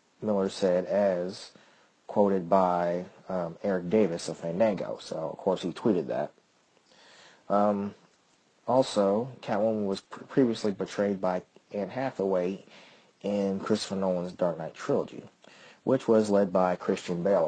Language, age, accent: English, 30-49, American